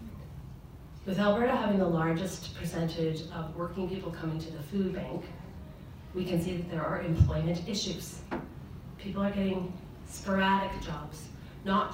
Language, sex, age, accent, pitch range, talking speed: English, female, 30-49, American, 160-195 Hz, 140 wpm